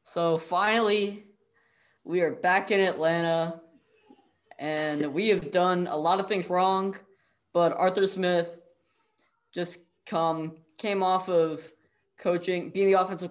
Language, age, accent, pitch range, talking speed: English, 20-39, American, 155-185 Hz, 125 wpm